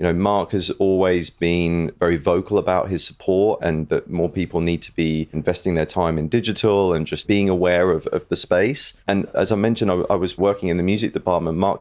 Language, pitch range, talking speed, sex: English, 85-100 Hz, 225 wpm, male